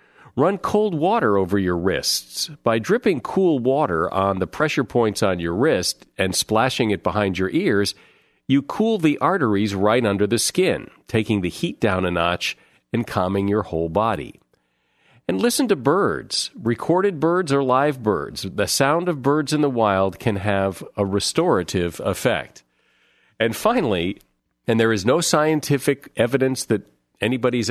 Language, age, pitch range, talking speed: English, 40-59, 100-135 Hz, 160 wpm